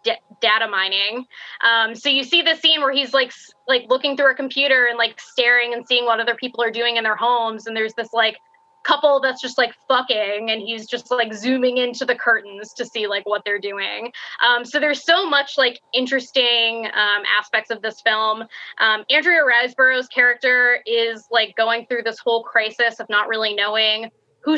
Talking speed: 200 wpm